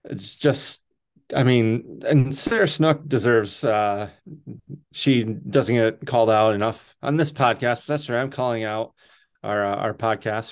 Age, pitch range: 20-39, 110-140 Hz